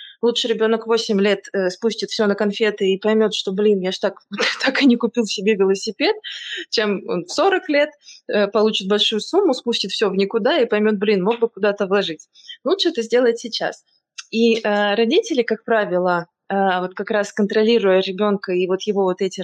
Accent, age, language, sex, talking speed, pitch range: native, 20-39, Russian, female, 185 wpm, 200-240 Hz